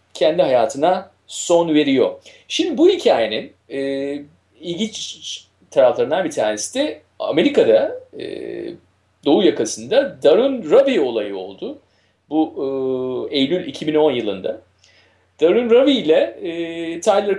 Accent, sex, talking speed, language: native, male, 105 wpm, Turkish